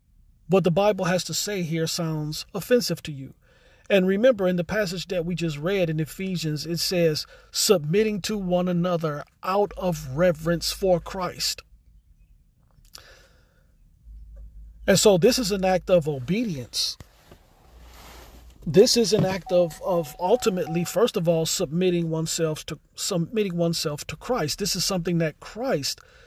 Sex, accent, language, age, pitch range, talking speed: male, American, English, 40-59, 160-200 Hz, 140 wpm